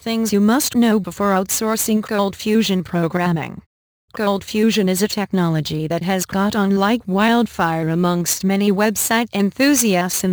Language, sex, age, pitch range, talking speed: English, female, 40-59, 185-220 Hz, 145 wpm